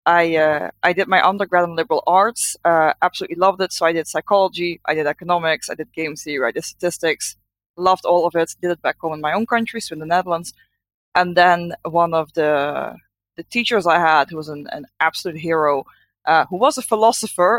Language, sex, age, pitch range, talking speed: English, female, 20-39, 160-185 Hz, 215 wpm